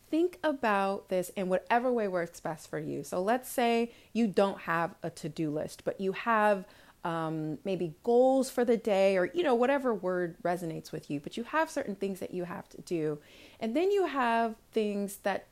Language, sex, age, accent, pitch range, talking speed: English, female, 30-49, American, 175-230 Hz, 200 wpm